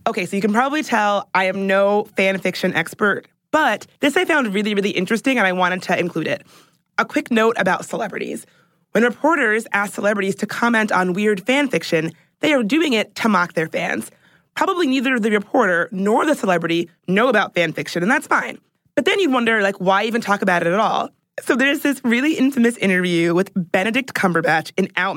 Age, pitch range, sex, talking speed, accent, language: 20-39, 185-240 Hz, female, 205 wpm, American, English